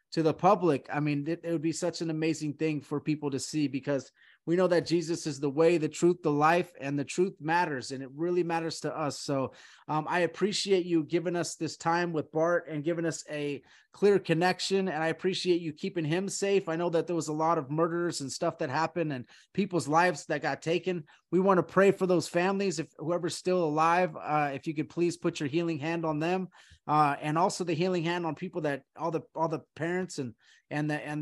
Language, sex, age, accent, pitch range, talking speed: English, male, 30-49, American, 150-175 Hz, 235 wpm